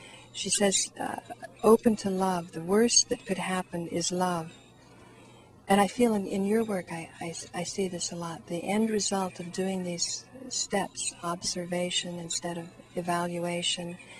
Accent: American